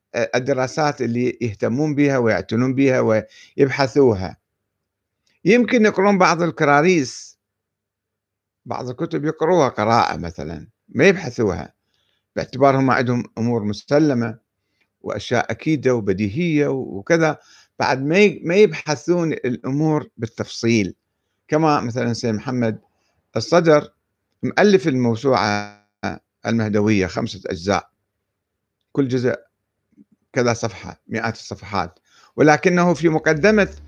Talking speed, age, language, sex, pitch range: 90 wpm, 50-69, Arabic, male, 110-155 Hz